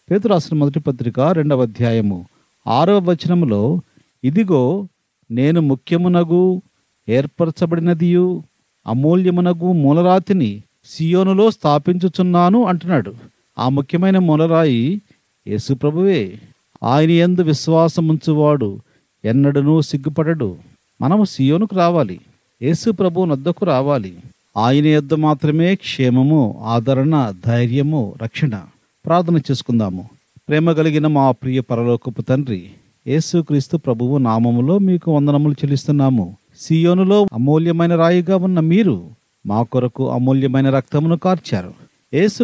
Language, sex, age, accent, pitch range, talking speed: Telugu, male, 40-59, native, 125-170 Hz, 95 wpm